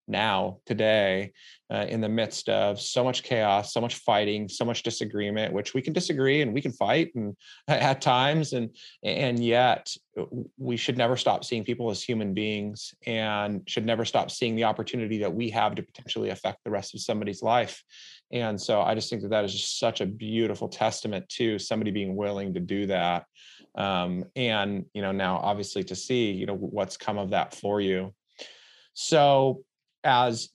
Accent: American